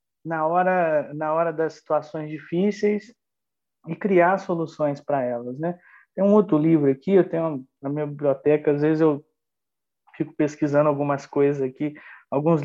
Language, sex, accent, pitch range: Portuguese, male, Brazilian, 145-185 Hz